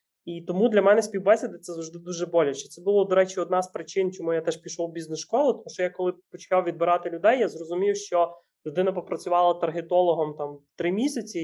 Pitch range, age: 155-180 Hz, 20-39